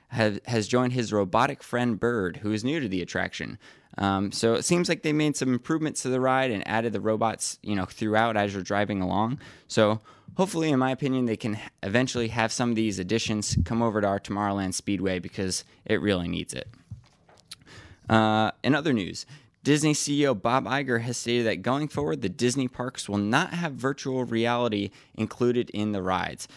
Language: English